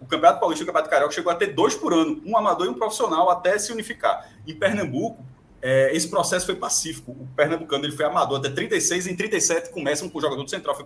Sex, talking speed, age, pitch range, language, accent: male, 250 wpm, 20-39, 155-215 Hz, Portuguese, Brazilian